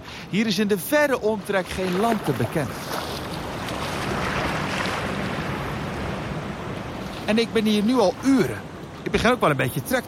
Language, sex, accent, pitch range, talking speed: Dutch, male, Dutch, 135-210 Hz, 145 wpm